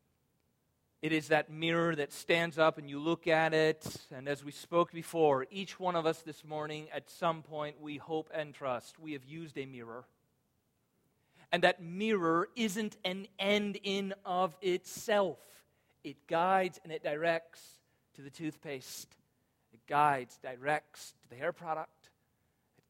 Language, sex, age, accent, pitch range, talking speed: English, male, 40-59, American, 135-170 Hz, 155 wpm